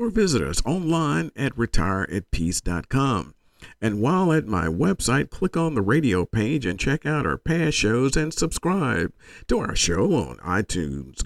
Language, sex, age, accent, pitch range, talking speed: English, male, 50-69, American, 90-150 Hz, 160 wpm